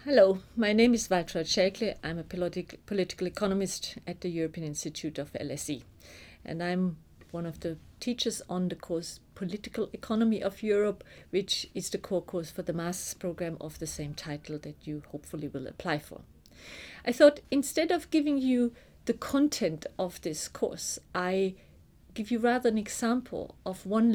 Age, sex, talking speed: 50-69, female, 170 wpm